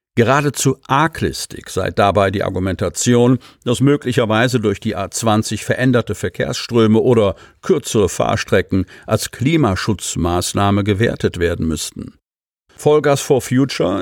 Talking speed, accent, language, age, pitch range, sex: 105 wpm, German, German, 50-69, 100-125 Hz, male